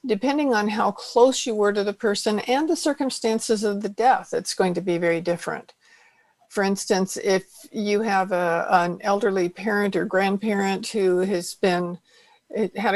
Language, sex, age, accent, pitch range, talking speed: English, female, 60-79, American, 195-235 Hz, 165 wpm